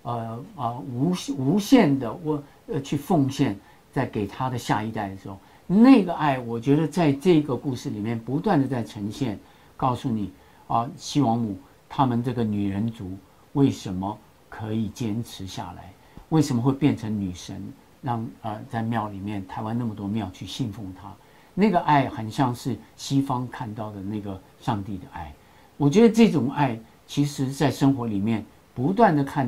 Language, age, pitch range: Chinese, 50-69, 105-140 Hz